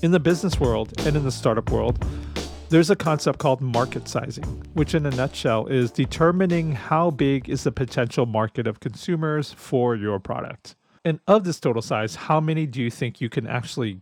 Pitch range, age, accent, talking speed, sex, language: 115-155 Hz, 40-59, American, 195 wpm, male, English